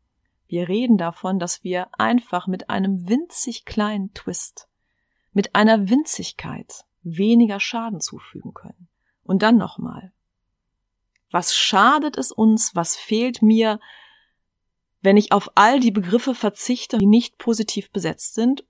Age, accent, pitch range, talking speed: 30-49, German, 185-235 Hz, 130 wpm